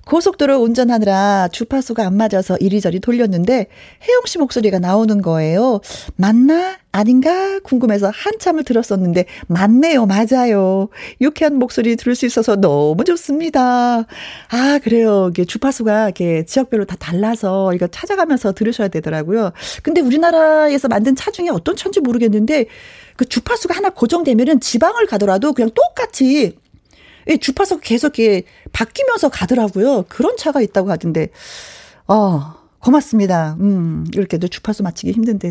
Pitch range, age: 195-290 Hz, 40-59